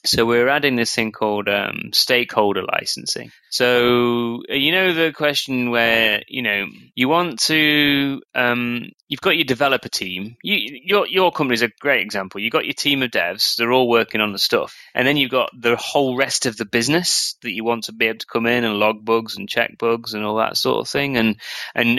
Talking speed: 215 wpm